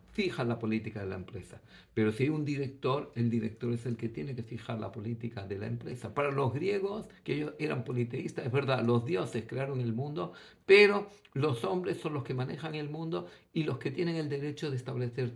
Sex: male